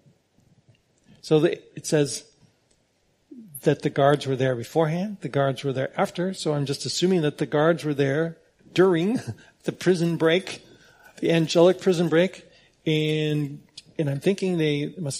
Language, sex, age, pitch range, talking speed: English, male, 40-59, 145-190 Hz, 150 wpm